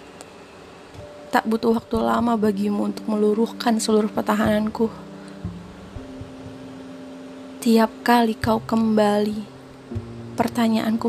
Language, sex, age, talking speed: Indonesian, female, 20-39, 75 wpm